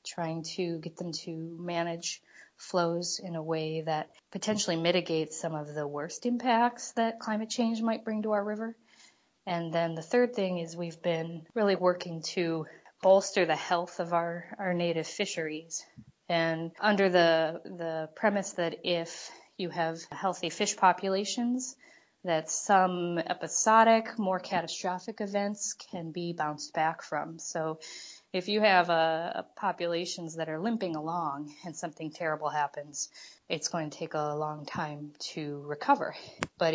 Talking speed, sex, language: 150 wpm, female, English